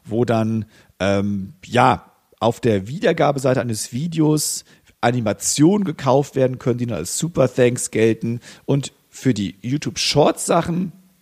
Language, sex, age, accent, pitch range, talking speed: German, male, 50-69, German, 115-155 Hz, 125 wpm